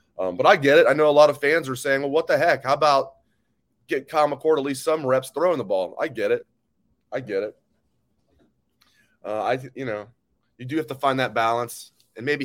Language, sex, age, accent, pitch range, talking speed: English, male, 30-49, American, 115-150 Hz, 230 wpm